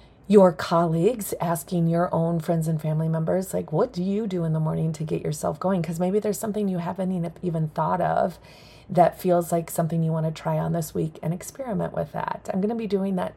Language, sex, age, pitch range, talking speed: English, female, 30-49, 160-195 Hz, 230 wpm